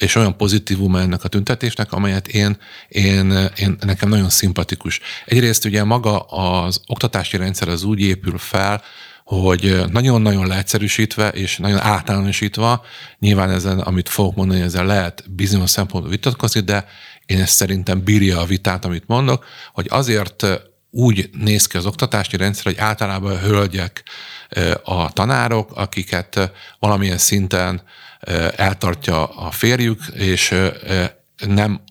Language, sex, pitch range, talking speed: Hungarian, male, 95-110 Hz, 125 wpm